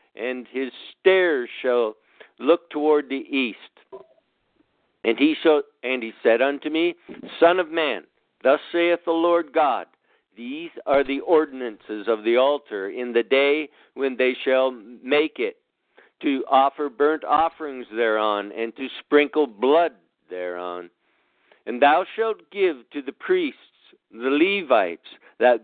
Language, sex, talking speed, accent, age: English, male, 140 wpm, American, 60-79